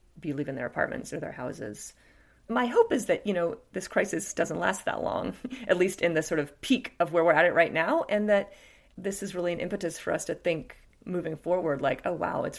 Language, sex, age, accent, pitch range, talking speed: English, female, 30-49, American, 150-185 Hz, 240 wpm